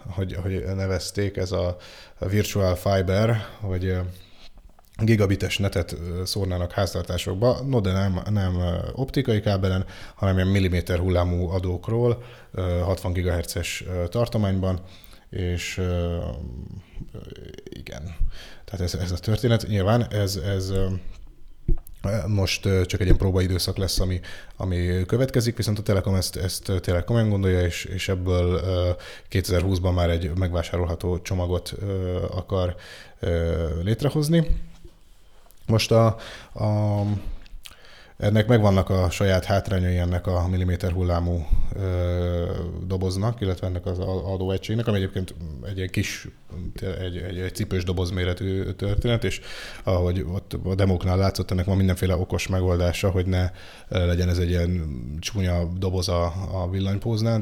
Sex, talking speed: male, 115 wpm